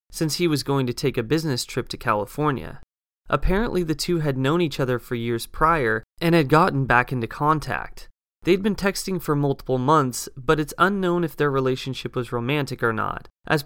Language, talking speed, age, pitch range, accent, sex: English, 195 wpm, 20-39, 125-160 Hz, American, male